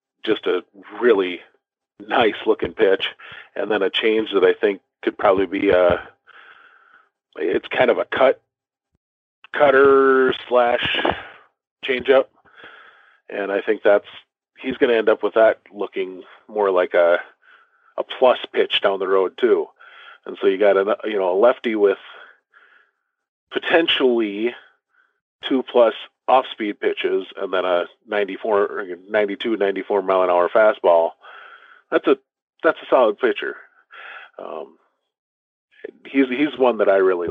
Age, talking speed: 40-59, 140 wpm